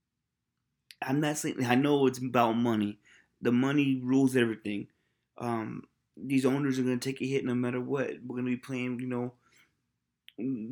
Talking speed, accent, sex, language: 180 wpm, American, male, English